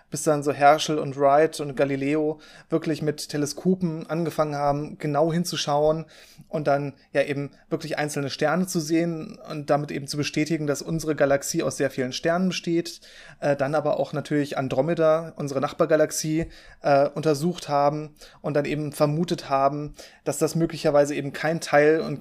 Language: German